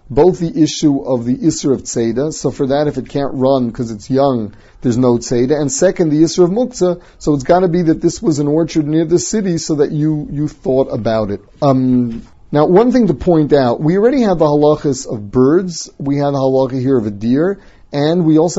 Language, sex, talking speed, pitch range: English, male, 230 wpm, 120-150 Hz